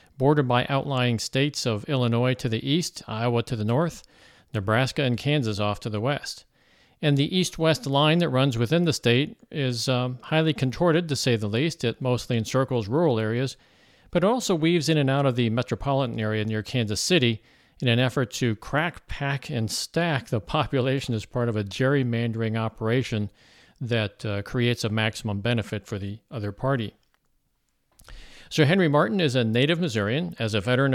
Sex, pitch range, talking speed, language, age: male, 115-140 Hz, 175 wpm, English, 50-69